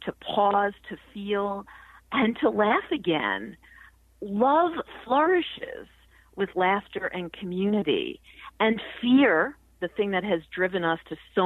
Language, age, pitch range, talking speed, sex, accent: English, 50-69, 175-230 Hz, 125 wpm, female, American